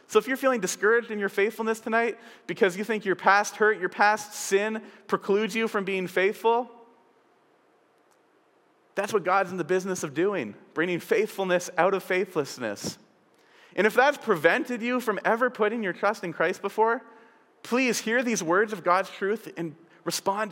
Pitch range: 175-215 Hz